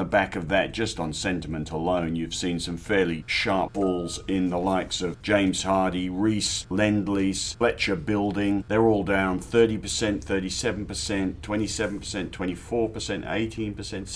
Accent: British